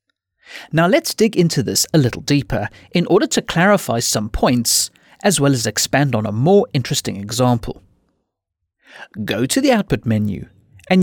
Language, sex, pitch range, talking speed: English, male, 110-175 Hz, 160 wpm